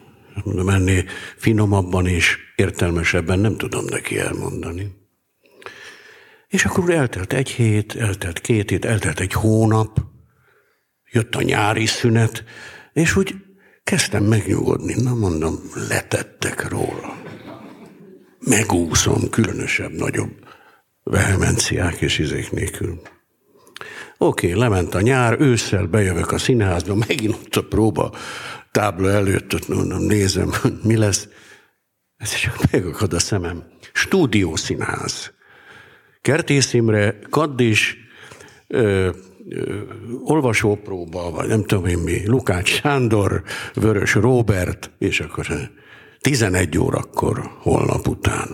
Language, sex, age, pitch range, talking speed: Hungarian, male, 60-79, 95-120 Hz, 100 wpm